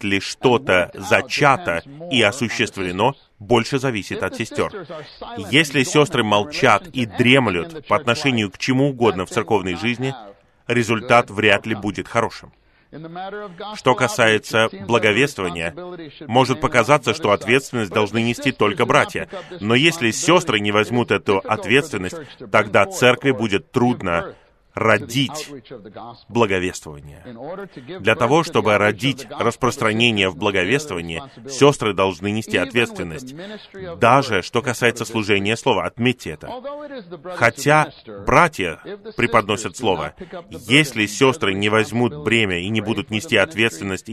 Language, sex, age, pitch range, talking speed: Russian, male, 30-49, 105-135 Hz, 115 wpm